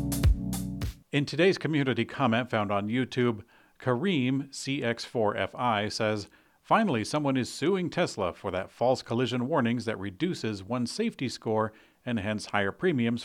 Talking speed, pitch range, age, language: 130 wpm, 100-125 Hz, 50-69, English